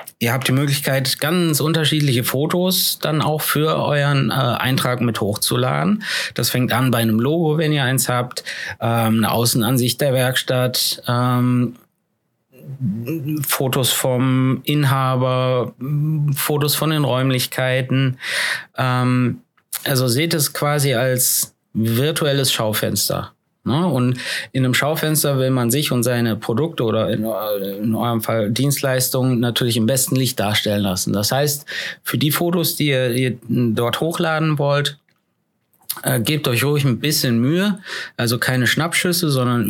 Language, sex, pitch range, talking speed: German, male, 120-150 Hz, 130 wpm